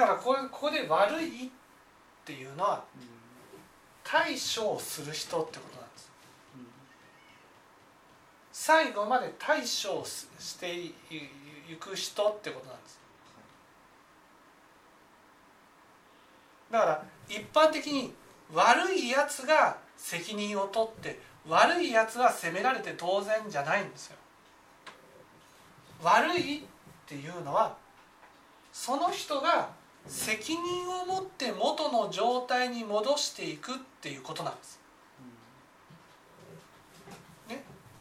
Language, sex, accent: Japanese, male, native